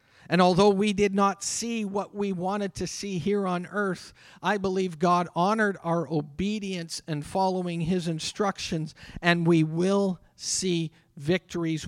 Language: English